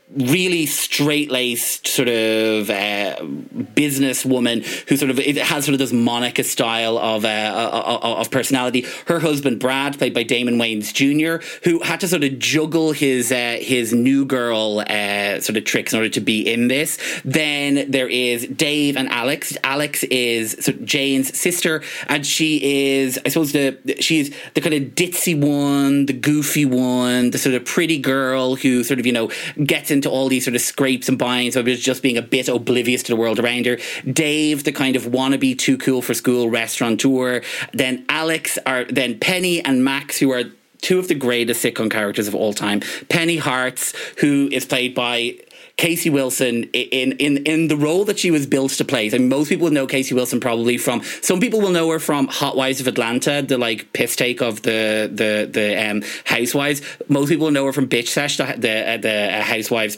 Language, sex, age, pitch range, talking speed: English, male, 30-49, 120-145 Hz, 195 wpm